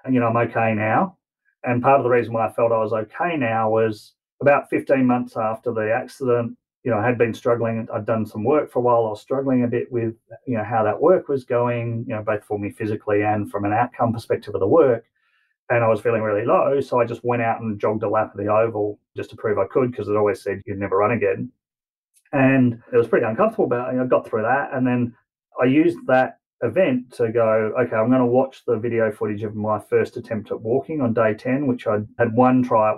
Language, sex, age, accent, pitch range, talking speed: English, male, 30-49, Australian, 105-125 Hz, 255 wpm